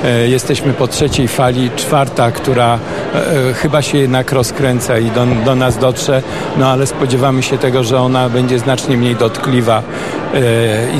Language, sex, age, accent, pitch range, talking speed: Polish, male, 50-69, native, 120-140 Hz, 145 wpm